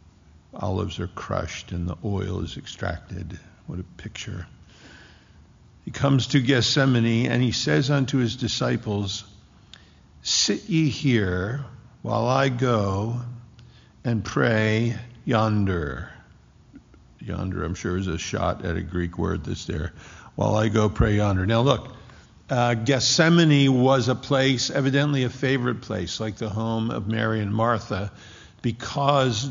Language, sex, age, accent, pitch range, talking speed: English, male, 50-69, American, 100-125 Hz, 135 wpm